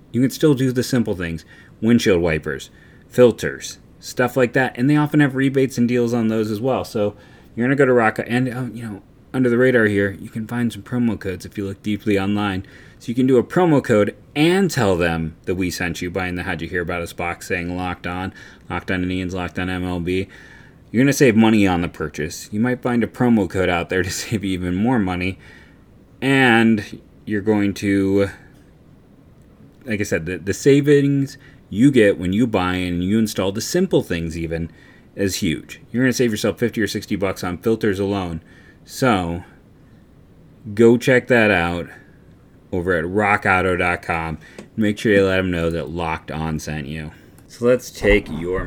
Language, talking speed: English, 195 wpm